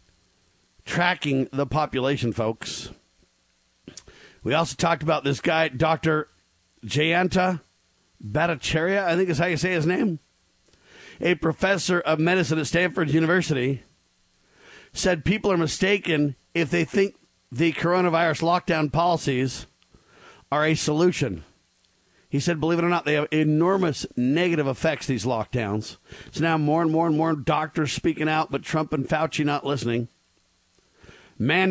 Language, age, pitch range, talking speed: English, 50-69, 135-175 Hz, 135 wpm